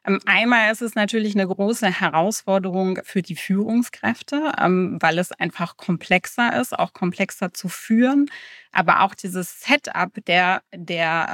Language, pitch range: German, 180-230 Hz